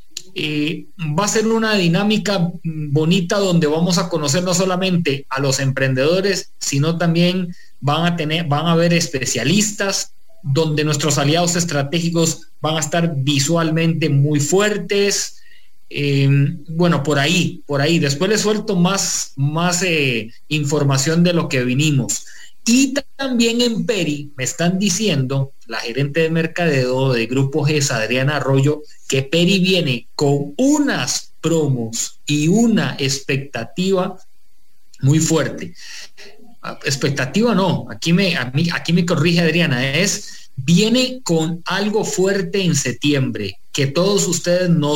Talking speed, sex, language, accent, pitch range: 130 wpm, male, English, Mexican, 140-185 Hz